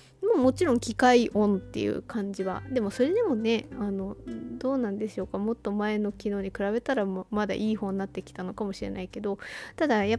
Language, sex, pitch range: Japanese, female, 205-275 Hz